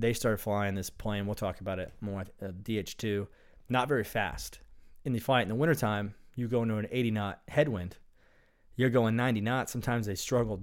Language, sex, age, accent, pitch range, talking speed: English, male, 30-49, American, 95-120 Hz, 190 wpm